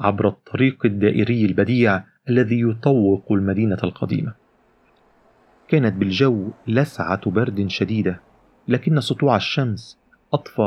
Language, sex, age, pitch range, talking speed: Arabic, male, 40-59, 95-125 Hz, 95 wpm